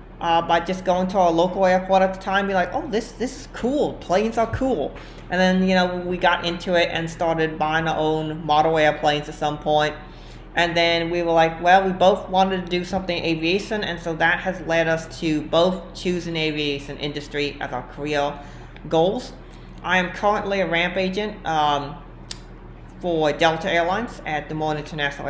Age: 40-59